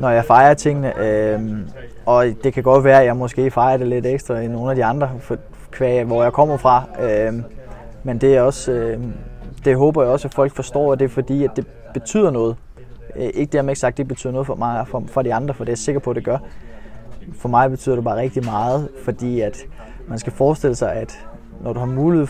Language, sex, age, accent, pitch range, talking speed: Danish, male, 20-39, native, 110-130 Hz, 240 wpm